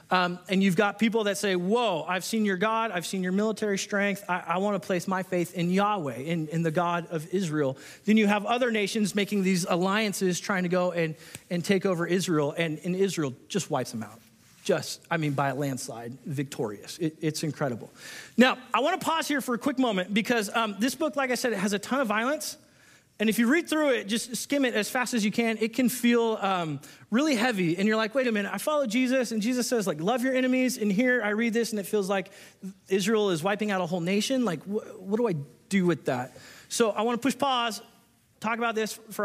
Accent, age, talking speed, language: American, 30-49, 240 wpm, English